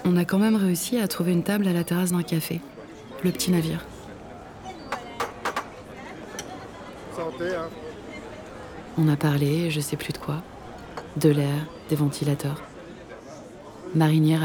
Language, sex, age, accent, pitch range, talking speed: French, female, 30-49, French, 165-200 Hz, 130 wpm